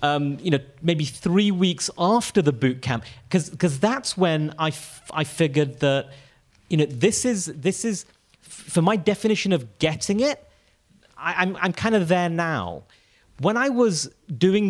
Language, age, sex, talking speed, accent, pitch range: English, 30-49, male, 165 wpm, British, 150-215 Hz